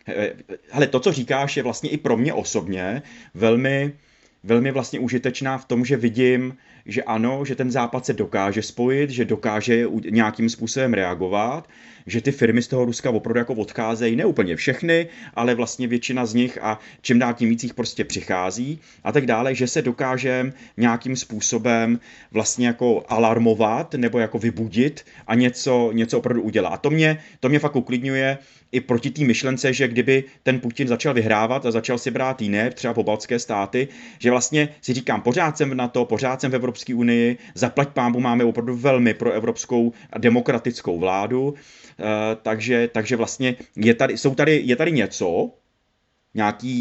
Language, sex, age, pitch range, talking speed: Czech, male, 30-49, 115-130 Hz, 175 wpm